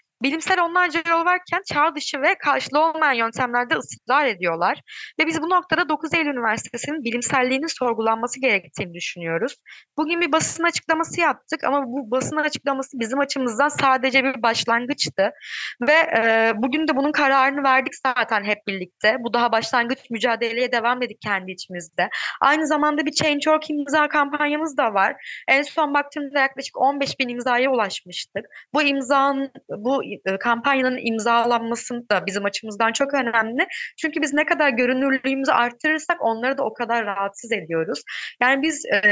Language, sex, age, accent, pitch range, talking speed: Turkish, female, 30-49, native, 235-295 Hz, 145 wpm